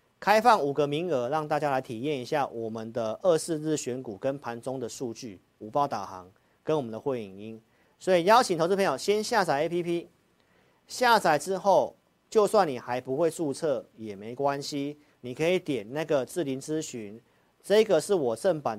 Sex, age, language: male, 50-69, Chinese